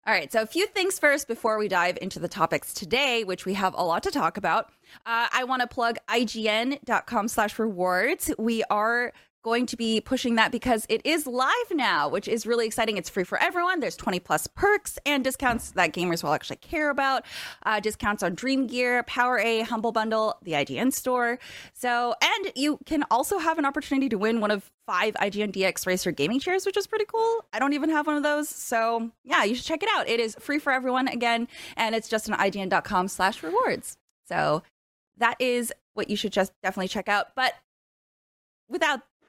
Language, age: English, 20-39